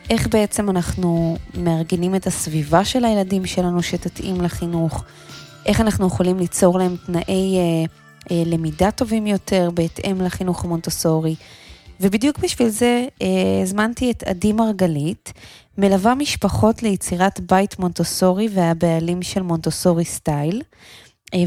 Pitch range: 165-205 Hz